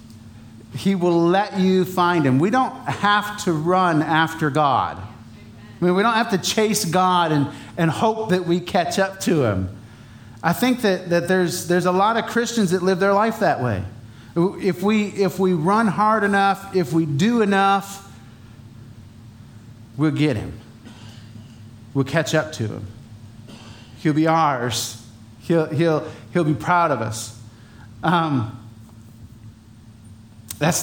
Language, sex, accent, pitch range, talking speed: English, male, American, 110-175 Hz, 145 wpm